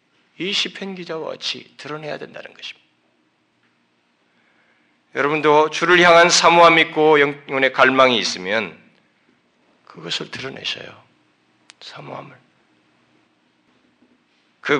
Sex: male